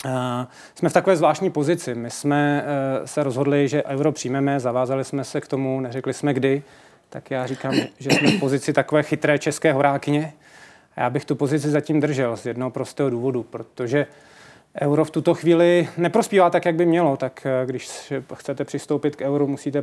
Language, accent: Czech, native